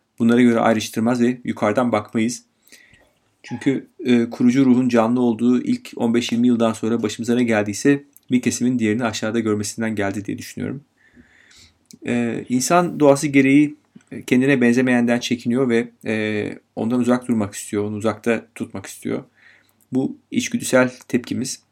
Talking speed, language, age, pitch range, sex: 130 wpm, Turkish, 40-59, 110-125 Hz, male